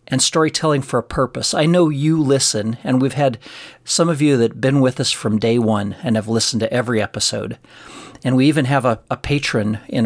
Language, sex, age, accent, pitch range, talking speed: English, male, 40-59, American, 110-135 Hz, 220 wpm